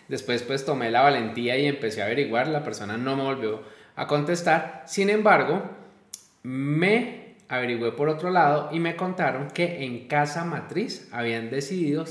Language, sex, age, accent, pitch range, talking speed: Spanish, male, 20-39, Colombian, 130-175 Hz, 160 wpm